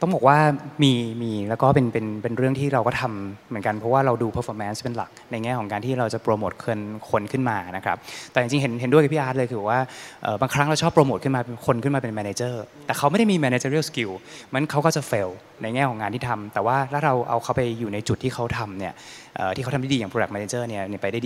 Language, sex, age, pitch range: Thai, male, 20-39, 115-140 Hz